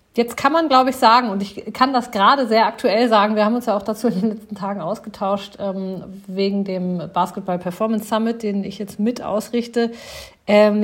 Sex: female